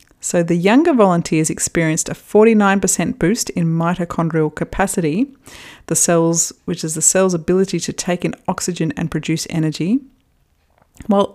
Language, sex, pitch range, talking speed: English, female, 170-230 Hz, 135 wpm